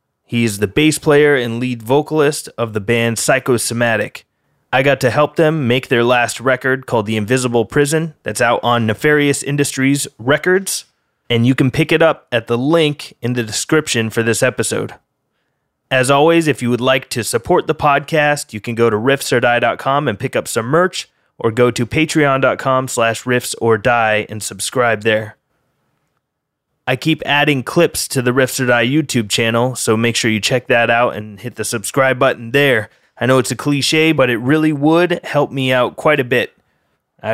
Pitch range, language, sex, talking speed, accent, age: 115-145 Hz, English, male, 185 wpm, American, 20-39